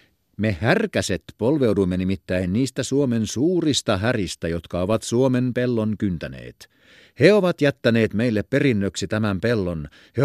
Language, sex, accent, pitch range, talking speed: Finnish, male, native, 100-150 Hz, 125 wpm